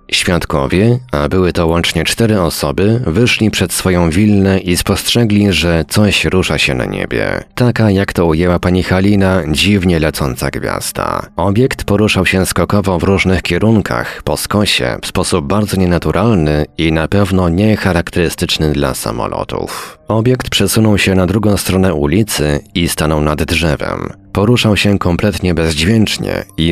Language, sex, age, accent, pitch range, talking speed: Polish, male, 40-59, native, 80-105 Hz, 145 wpm